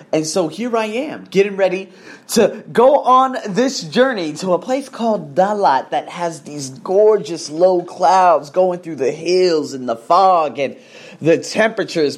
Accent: American